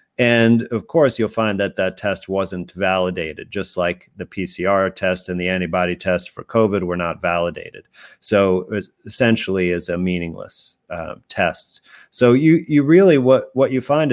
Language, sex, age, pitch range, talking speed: English, male, 40-59, 95-120 Hz, 165 wpm